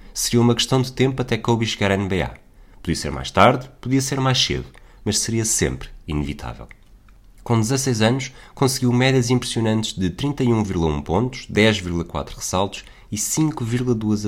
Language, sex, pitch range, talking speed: Portuguese, male, 90-120 Hz, 145 wpm